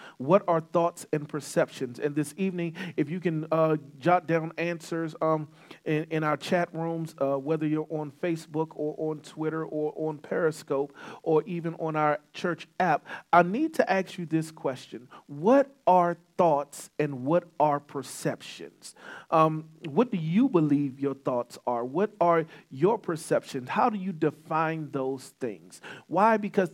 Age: 40-59